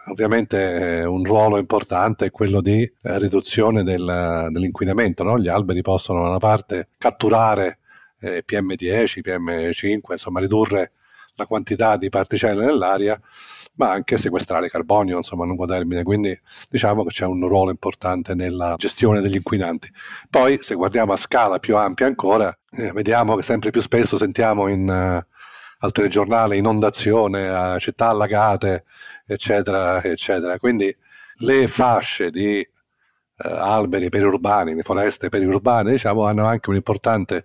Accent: native